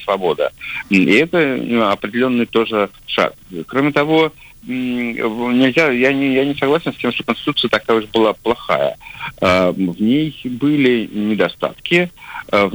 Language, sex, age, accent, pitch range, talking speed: Russian, male, 50-69, native, 100-125 Hz, 125 wpm